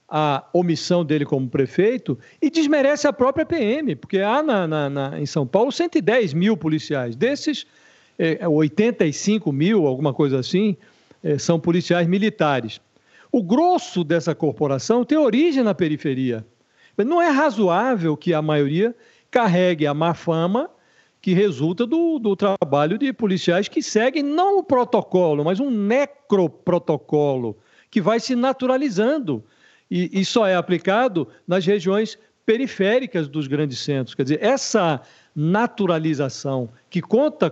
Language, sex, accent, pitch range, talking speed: Portuguese, male, Brazilian, 150-235 Hz, 135 wpm